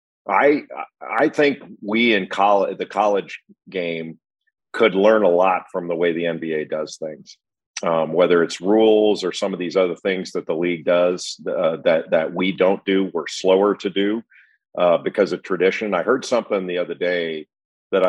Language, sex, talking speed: English, male, 185 wpm